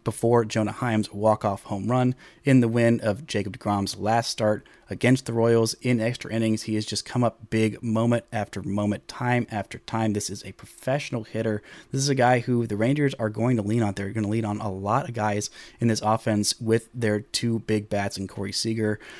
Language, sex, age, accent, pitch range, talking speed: English, male, 30-49, American, 110-135 Hz, 215 wpm